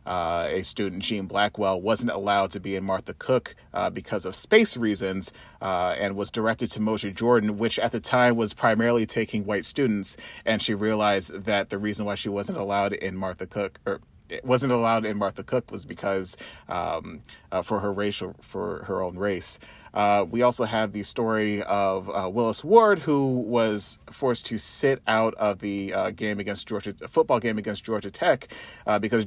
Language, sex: English, male